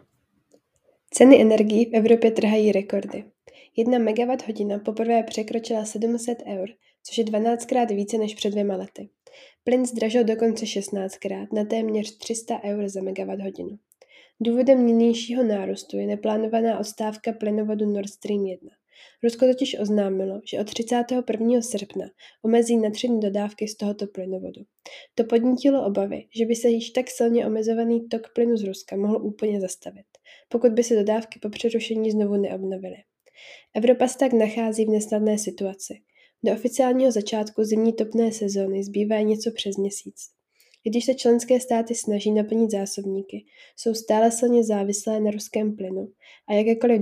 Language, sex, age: Czech, female, 10-29